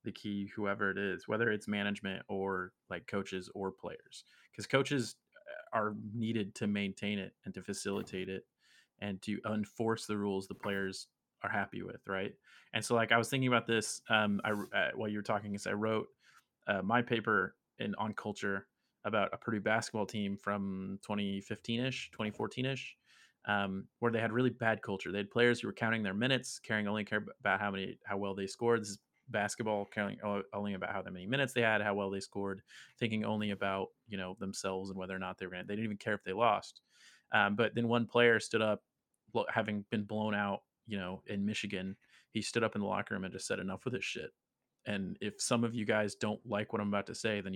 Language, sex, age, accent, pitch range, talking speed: English, male, 30-49, American, 95-110 Hz, 215 wpm